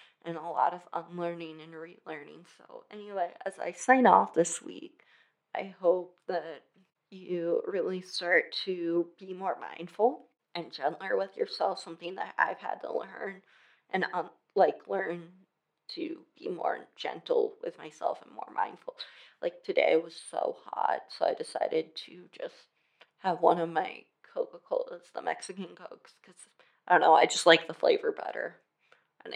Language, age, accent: English, 20-39, American